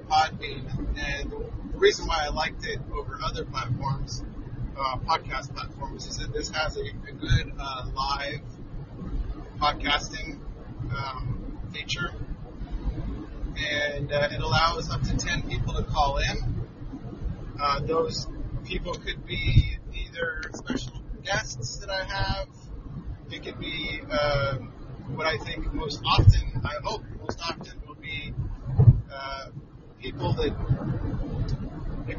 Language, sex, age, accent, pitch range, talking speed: English, male, 30-49, American, 120-145 Hz, 125 wpm